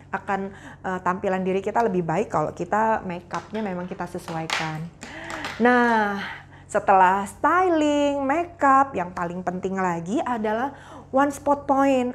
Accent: native